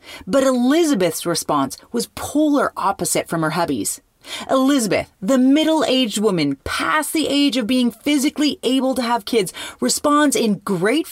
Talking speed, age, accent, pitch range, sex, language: 140 wpm, 30-49, American, 225-280 Hz, female, English